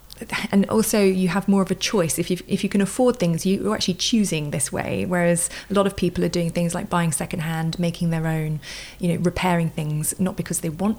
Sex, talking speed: female, 230 wpm